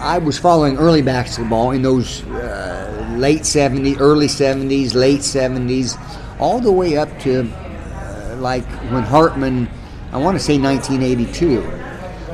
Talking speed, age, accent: 135 wpm, 50-69, American